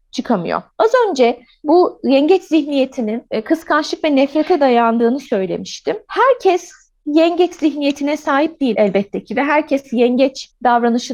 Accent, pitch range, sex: native, 220-315 Hz, female